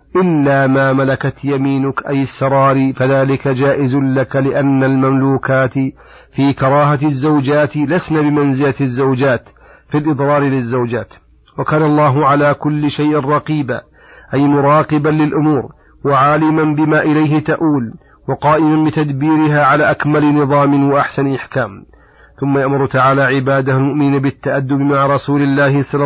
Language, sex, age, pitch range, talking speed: Arabic, male, 40-59, 135-150 Hz, 115 wpm